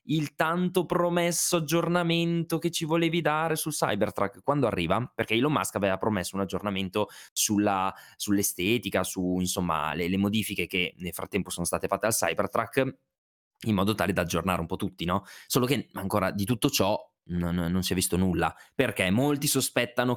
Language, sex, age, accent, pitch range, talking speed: Italian, male, 20-39, native, 90-110 Hz, 175 wpm